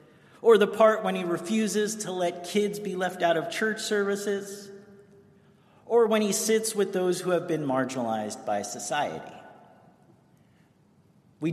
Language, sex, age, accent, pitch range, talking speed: English, male, 40-59, American, 150-205 Hz, 145 wpm